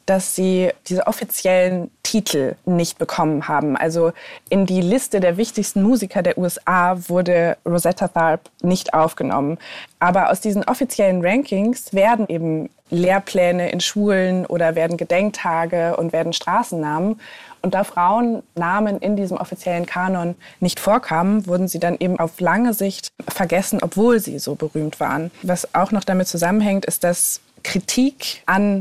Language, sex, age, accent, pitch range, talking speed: German, female, 20-39, German, 165-195 Hz, 145 wpm